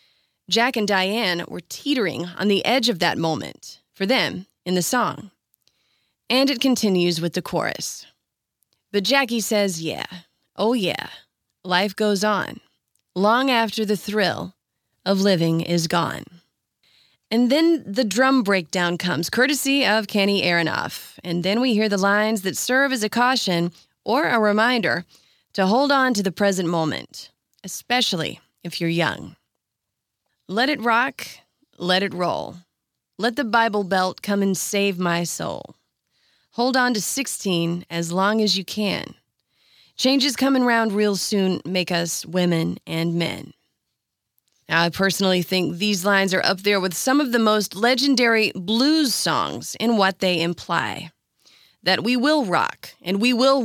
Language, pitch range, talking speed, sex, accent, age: English, 180-235 Hz, 150 wpm, female, American, 20-39